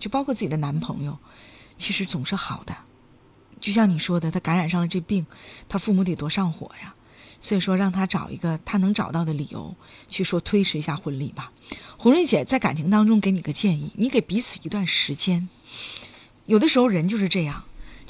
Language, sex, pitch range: Chinese, female, 160-215 Hz